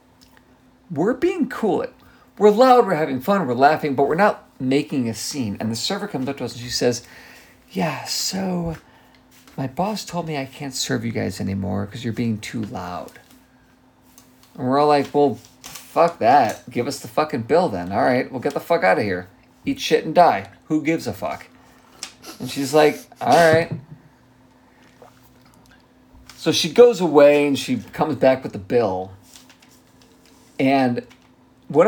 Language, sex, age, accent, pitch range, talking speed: English, male, 50-69, American, 120-160 Hz, 170 wpm